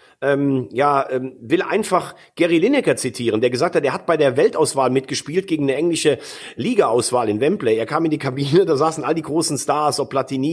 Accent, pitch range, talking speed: German, 145-230 Hz, 205 wpm